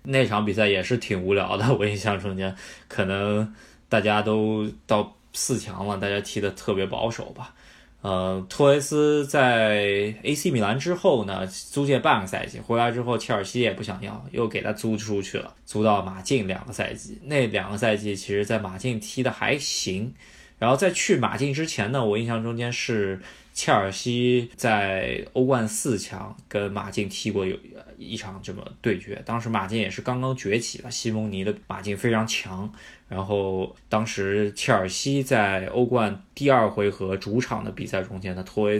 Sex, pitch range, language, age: male, 100-120 Hz, Chinese, 20-39